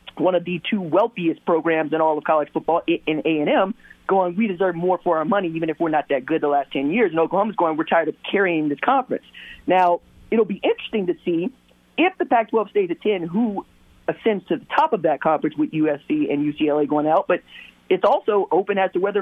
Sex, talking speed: male, 225 wpm